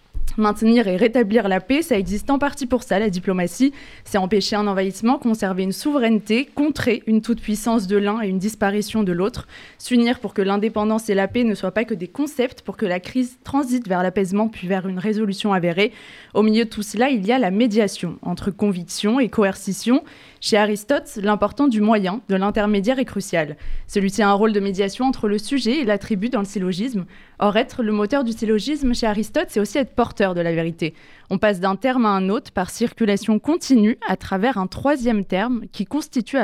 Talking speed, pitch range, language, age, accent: 205 wpm, 195-240 Hz, French, 20-39, French